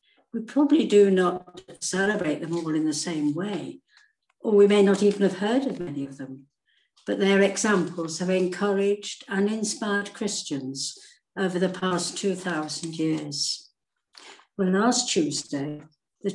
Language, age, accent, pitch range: English, 60-79, British, 165-195 Hz